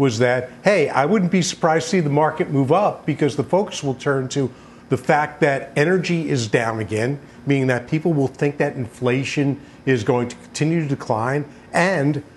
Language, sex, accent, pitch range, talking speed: English, male, American, 130-165 Hz, 195 wpm